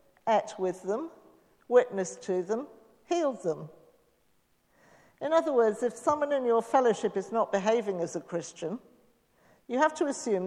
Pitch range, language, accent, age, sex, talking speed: 185-235 Hz, English, British, 50-69, female, 150 wpm